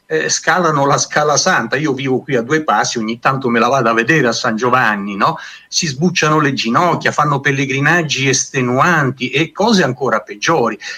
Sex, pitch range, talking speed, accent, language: male, 125-190 Hz, 175 wpm, native, Italian